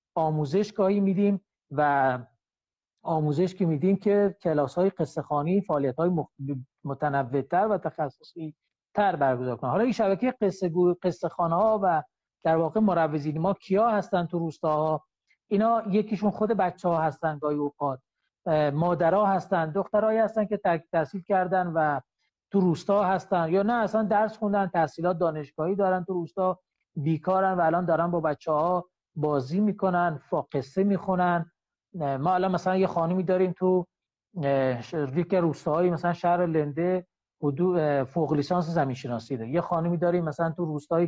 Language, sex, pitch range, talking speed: Persian, male, 155-190 Hz, 135 wpm